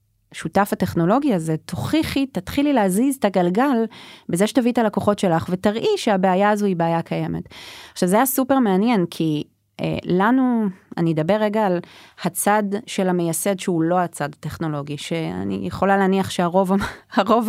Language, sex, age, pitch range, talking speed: Hebrew, female, 30-49, 165-215 Hz, 150 wpm